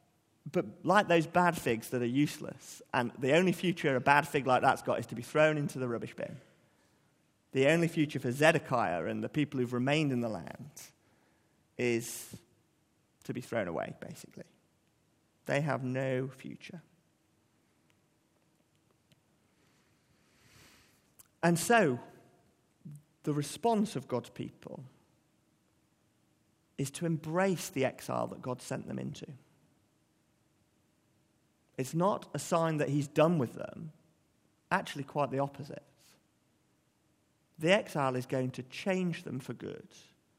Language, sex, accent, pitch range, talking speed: English, male, British, 130-180 Hz, 130 wpm